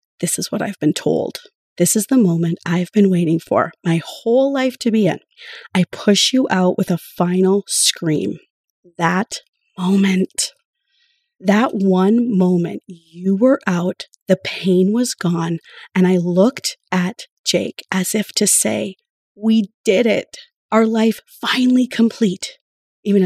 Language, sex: English, female